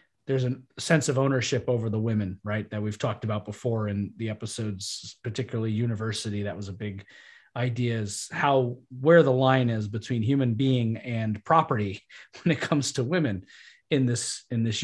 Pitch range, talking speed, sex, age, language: 110-140 Hz, 180 wpm, male, 30-49, English